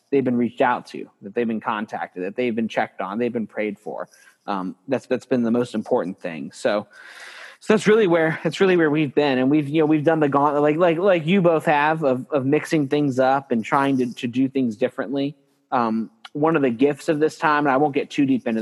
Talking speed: 250 wpm